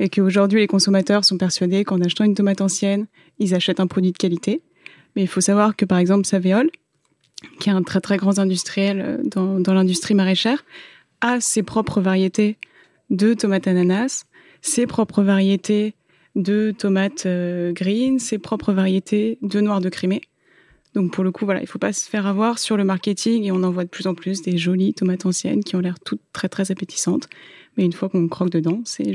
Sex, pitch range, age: female, 185-215 Hz, 20-39